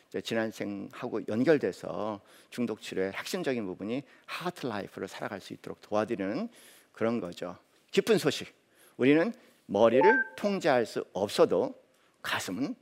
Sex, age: male, 50-69